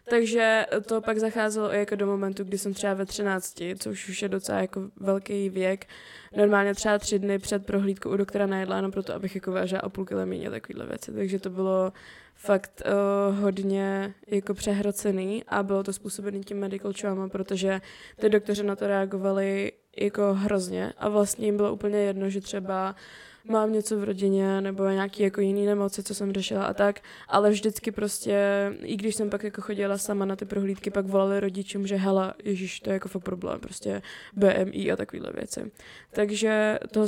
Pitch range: 195-210 Hz